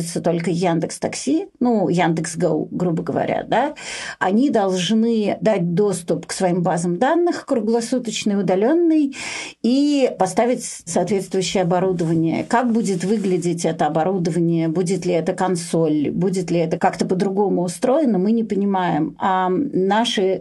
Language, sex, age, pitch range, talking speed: Russian, female, 40-59, 175-225 Hz, 125 wpm